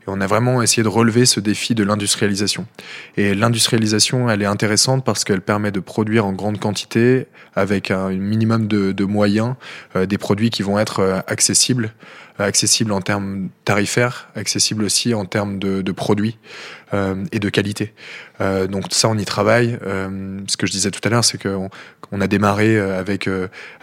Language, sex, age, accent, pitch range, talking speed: French, male, 20-39, French, 95-110 Hz, 185 wpm